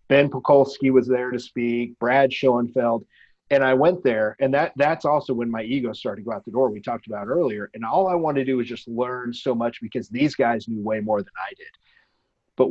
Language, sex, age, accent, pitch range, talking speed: English, male, 40-59, American, 115-135 Hz, 235 wpm